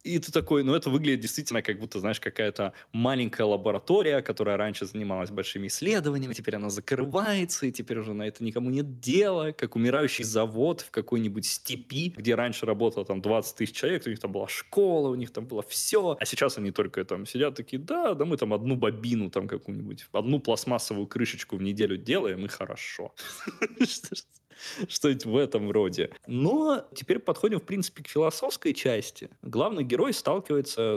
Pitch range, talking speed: 105-140 Hz, 175 wpm